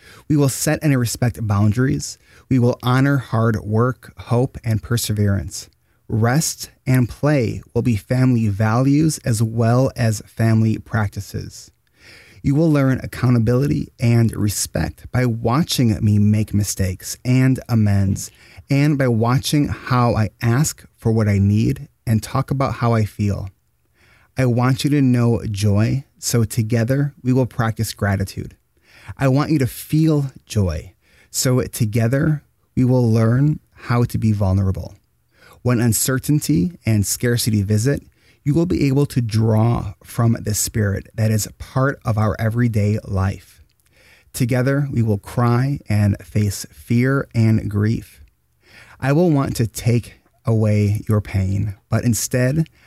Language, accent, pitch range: English, American, 105-130 Hz